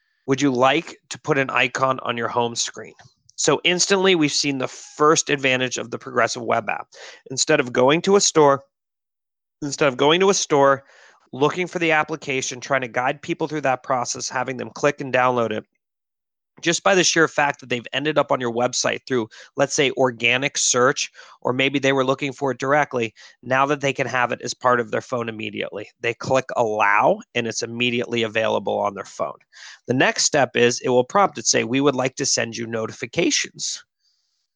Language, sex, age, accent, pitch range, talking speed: English, male, 30-49, American, 125-150 Hz, 200 wpm